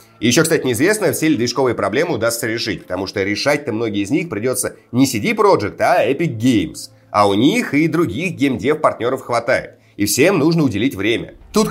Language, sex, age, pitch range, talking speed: Russian, male, 30-49, 130-185 Hz, 175 wpm